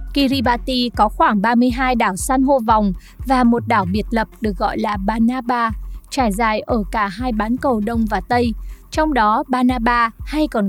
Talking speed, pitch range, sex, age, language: 180 wpm, 215-265 Hz, female, 20-39, Vietnamese